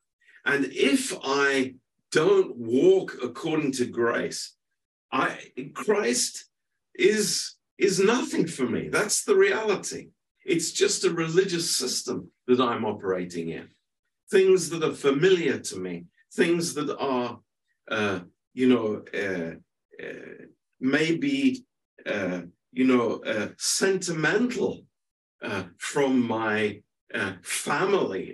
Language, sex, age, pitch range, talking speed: Romanian, male, 50-69, 115-185 Hz, 110 wpm